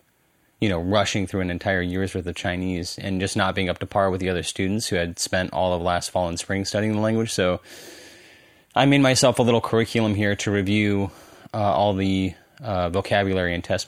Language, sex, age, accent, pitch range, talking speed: English, male, 30-49, American, 90-110 Hz, 215 wpm